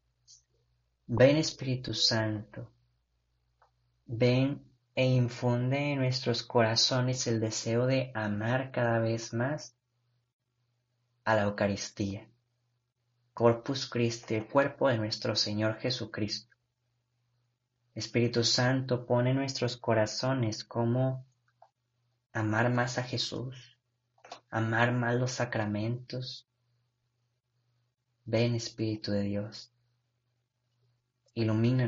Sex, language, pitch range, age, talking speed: male, Spanish, 110-125 Hz, 30-49, 90 wpm